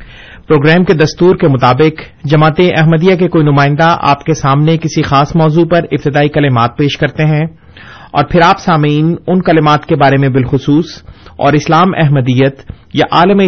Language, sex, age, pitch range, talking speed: Urdu, male, 30-49, 135-165 Hz, 165 wpm